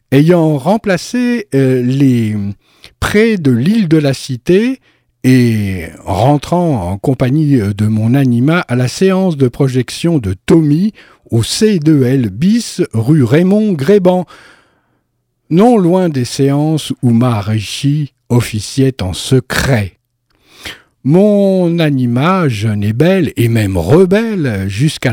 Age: 60-79